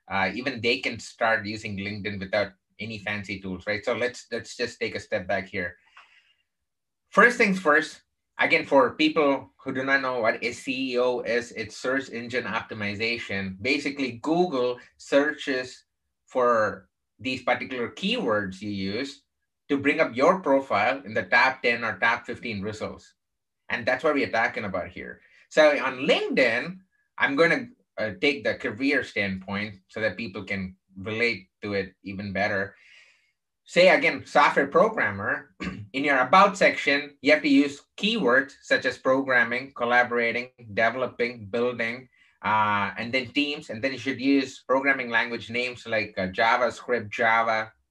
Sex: male